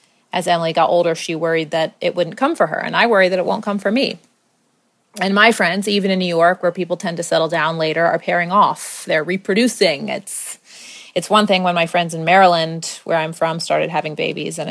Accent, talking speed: American, 230 wpm